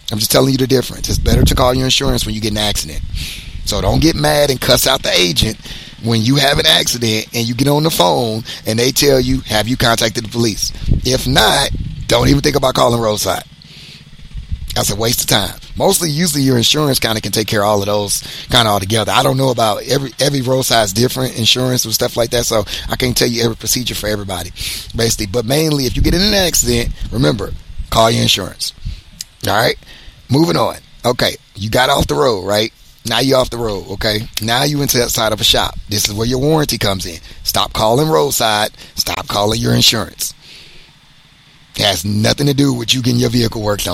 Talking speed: 220 wpm